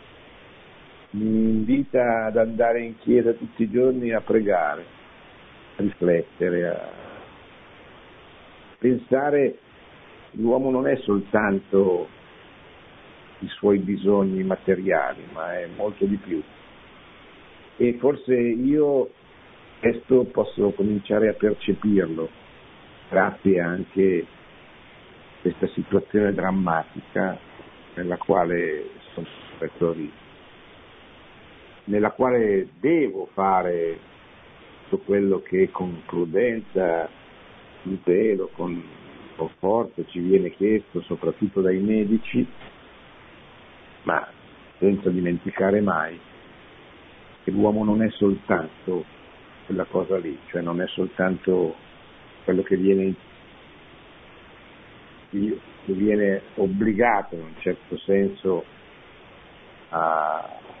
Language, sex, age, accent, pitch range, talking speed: Italian, male, 60-79, native, 95-115 Hz, 90 wpm